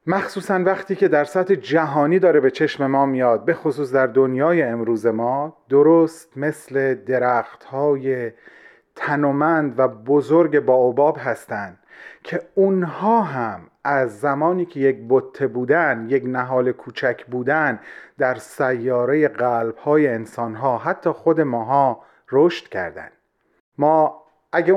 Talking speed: 120 wpm